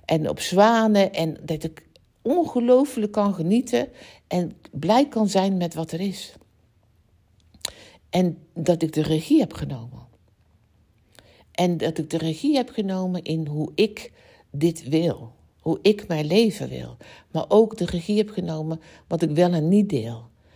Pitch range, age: 145-215 Hz, 60-79